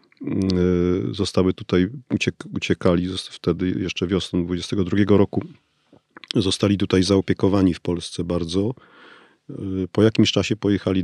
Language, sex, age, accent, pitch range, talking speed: Polish, male, 40-59, native, 95-110 Hz, 100 wpm